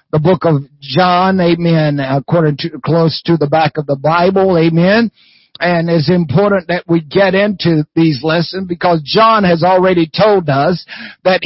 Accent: American